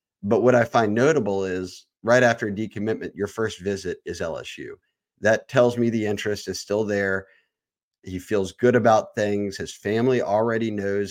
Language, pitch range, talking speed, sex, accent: English, 95-115 Hz, 175 wpm, male, American